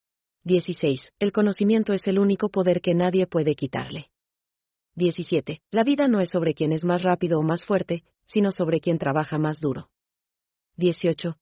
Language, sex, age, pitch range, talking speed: German, female, 30-49, 160-195 Hz, 165 wpm